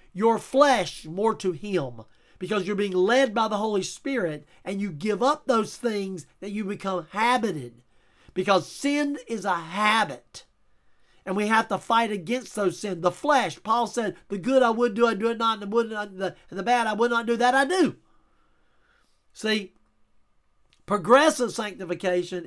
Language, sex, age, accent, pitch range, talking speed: English, male, 40-59, American, 180-235 Hz, 175 wpm